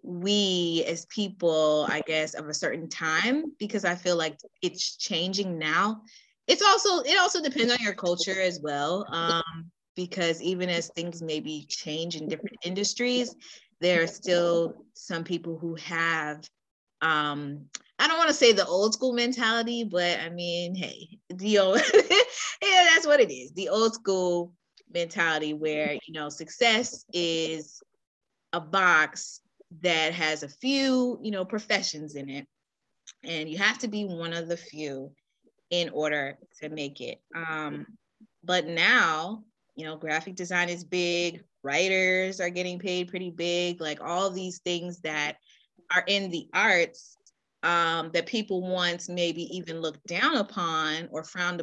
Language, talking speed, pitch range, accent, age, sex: English, 155 wpm, 160-200 Hz, American, 20-39, female